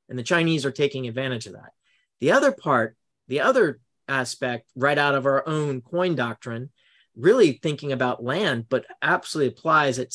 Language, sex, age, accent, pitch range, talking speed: English, male, 40-59, American, 130-165 Hz, 170 wpm